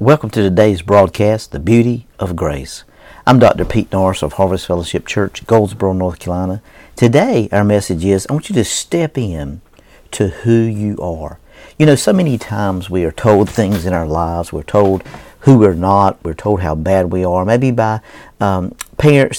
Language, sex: English, male